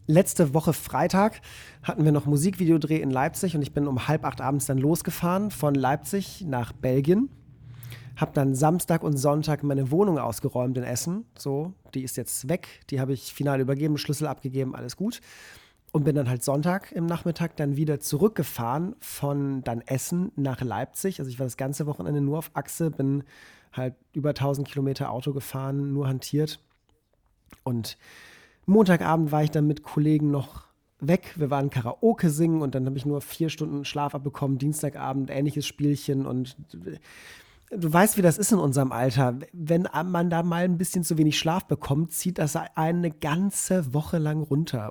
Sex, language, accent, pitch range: male, English, German, 130-160 Hz